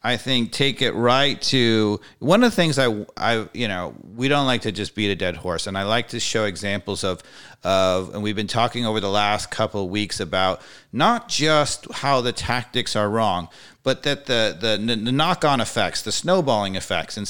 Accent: American